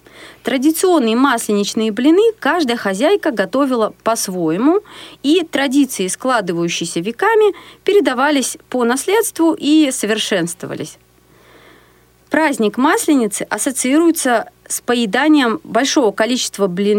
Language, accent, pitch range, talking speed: Russian, native, 215-315 Hz, 80 wpm